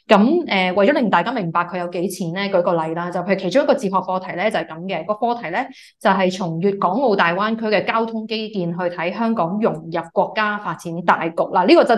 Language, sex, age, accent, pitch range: Chinese, female, 20-39, native, 180-225 Hz